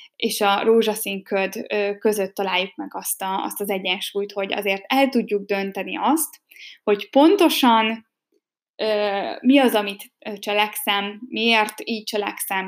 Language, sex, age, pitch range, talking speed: Hungarian, female, 10-29, 200-250 Hz, 135 wpm